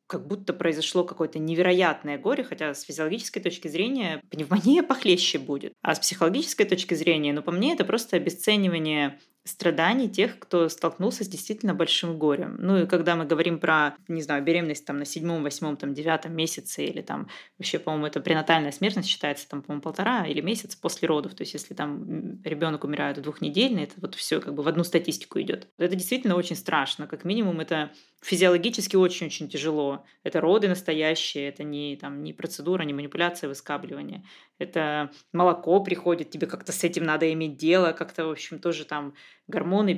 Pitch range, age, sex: 155-190 Hz, 20-39, female